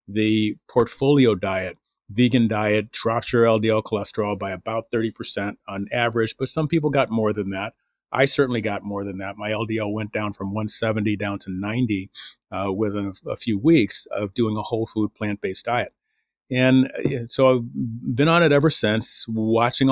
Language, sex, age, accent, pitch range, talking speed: English, male, 40-59, American, 105-130 Hz, 175 wpm